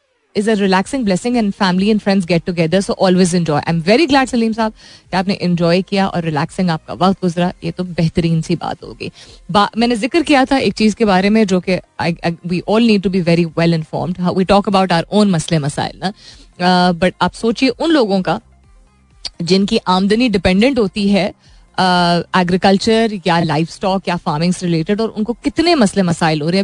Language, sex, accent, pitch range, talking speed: Hindi, female, native, 175-225 Hz, 195 wpm